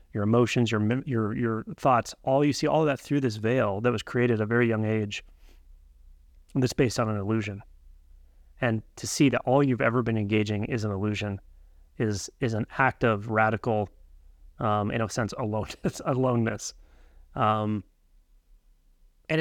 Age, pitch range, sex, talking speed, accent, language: 30-49, 100-125 Hz, male, 165 wpm, American, English